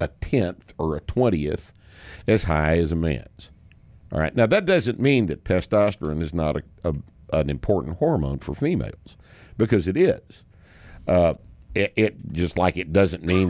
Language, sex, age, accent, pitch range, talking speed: English, male, 60-79, American, 80-100 Hz, 170 wpm